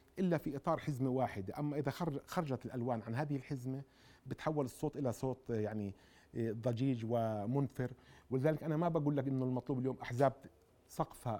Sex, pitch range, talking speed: male, 125-155 Hz, 155 wpm